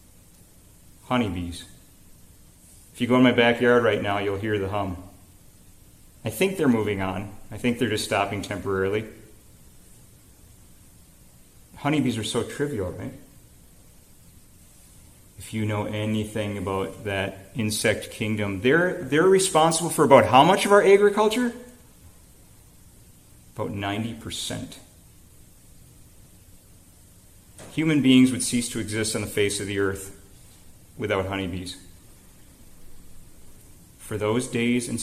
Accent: American